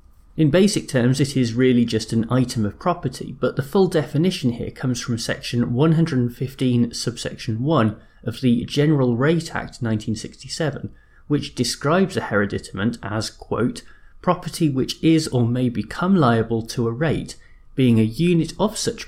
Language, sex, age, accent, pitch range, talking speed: English, male, 30-49, British, 110-155 Hz, 155 wpm